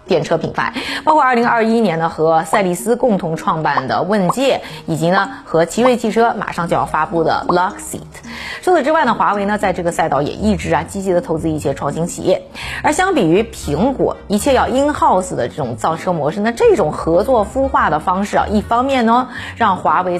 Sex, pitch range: female, 175-250 Hz